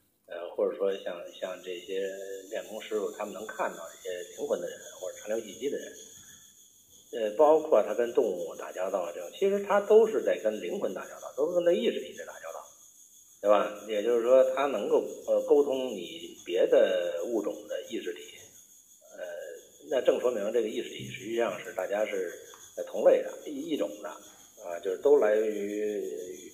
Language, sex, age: Chinese, male, 50-69